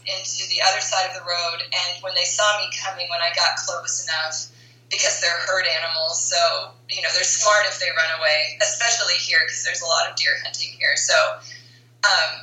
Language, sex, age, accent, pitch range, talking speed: English, female, 20-39, American, 120-200 Hz, 210 wpm